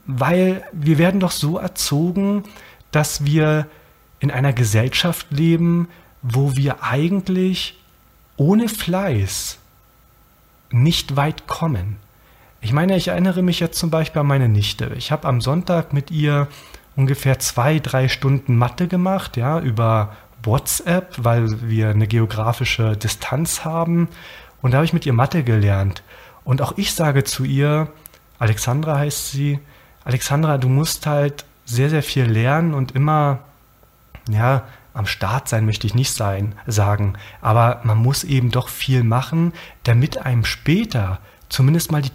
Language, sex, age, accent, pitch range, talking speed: German, male, 40-59, German, 115-160 Hz, 145 wpm